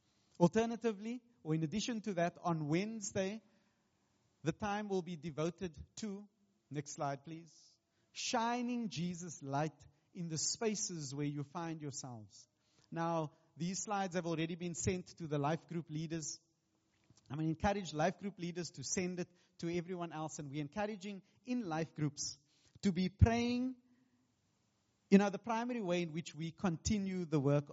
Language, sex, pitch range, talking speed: English, male, 140-195 Hz, 160 wpm